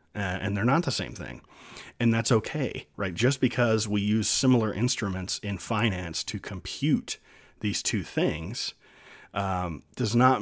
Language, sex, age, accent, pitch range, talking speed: English, male, 30-49, American, 90-115 Hz, 150 wpm